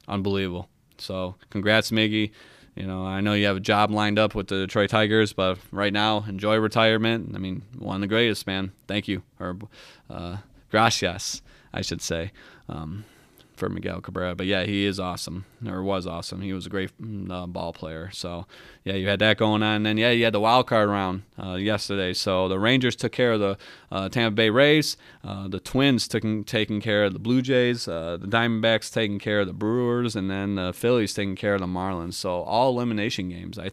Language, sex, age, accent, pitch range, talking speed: English, male, 20-39, American, 95-110 Hz, 210 wpm